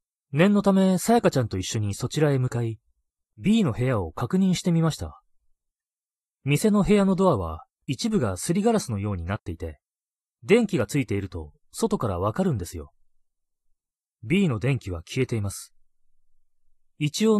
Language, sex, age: Japanese, male, 30-49